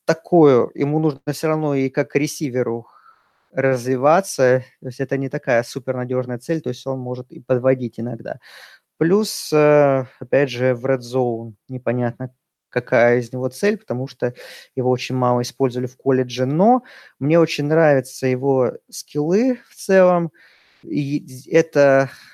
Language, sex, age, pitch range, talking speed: Russian, male, 20-39, 130-150 Hz, 140 wpm